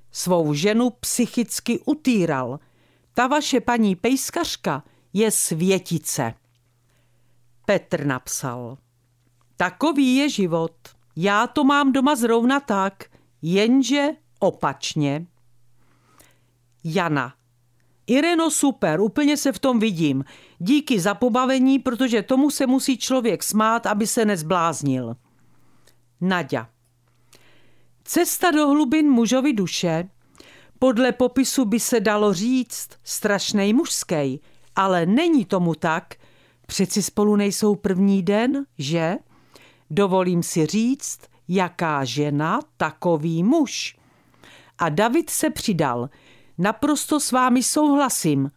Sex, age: female, 50-69